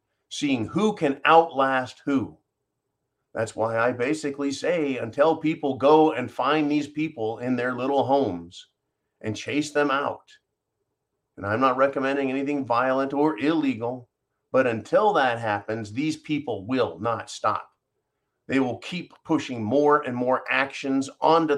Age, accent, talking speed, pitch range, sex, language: 40-59, American, 140 wpm, 110-140 Hz, male, English